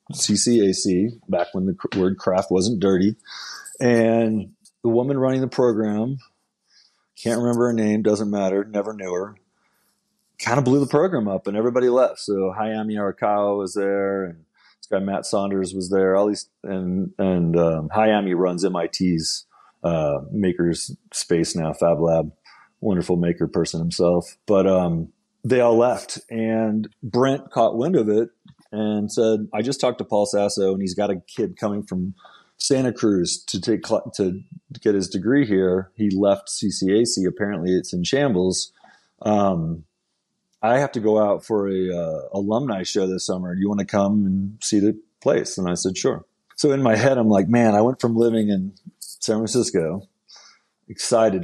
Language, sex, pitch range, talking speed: English, male, 90-115 Hz, 165 wpm